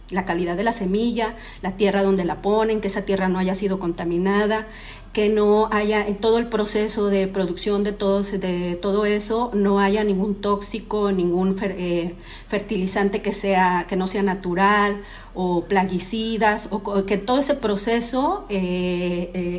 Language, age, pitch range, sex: Spanish, 40-59, 190-220 Hz, female